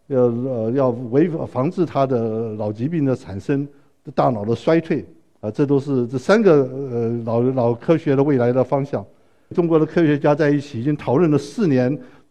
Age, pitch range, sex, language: 60-79, 125-160 Hz, male, Chinese